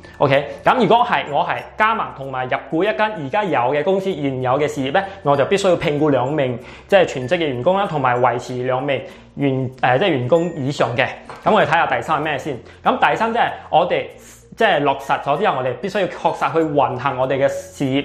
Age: 20-39